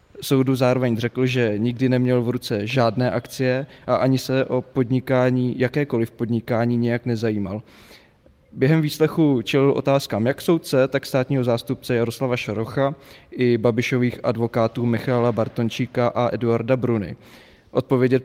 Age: 20-39